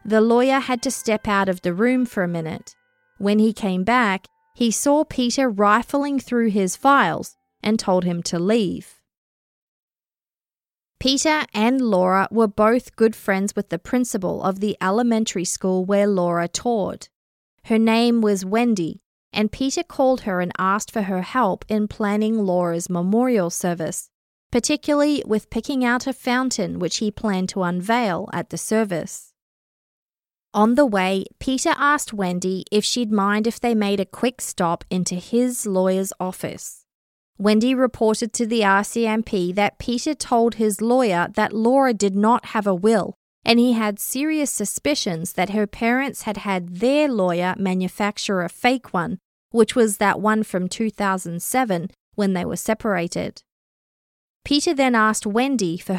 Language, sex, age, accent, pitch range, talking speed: English, female, 20-39, Australian, 190-240 Hz, 155 wpm